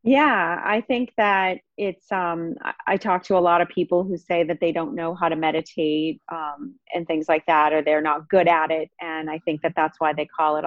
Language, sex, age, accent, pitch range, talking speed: English, female, 30-49, American, 160-185 Hz, 235 wpm